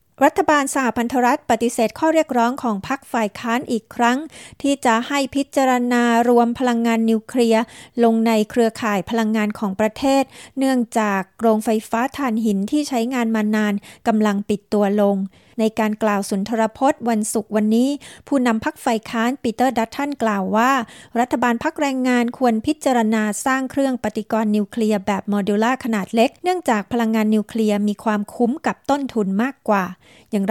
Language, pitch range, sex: Thai, 215-255 Hz, female